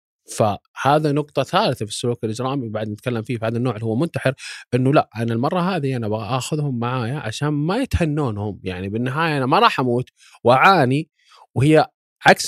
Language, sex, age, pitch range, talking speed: Arabic, male, 20-39, 115-150 Hz, 170 wpm